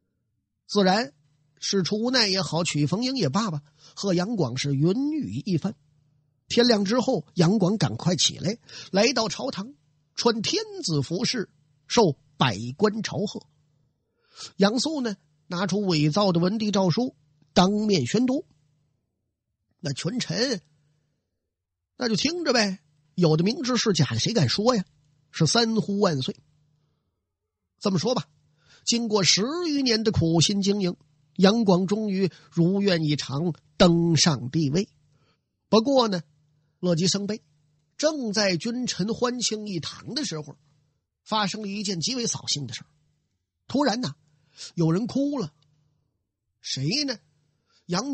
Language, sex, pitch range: Chinese, male, 145-215 Hz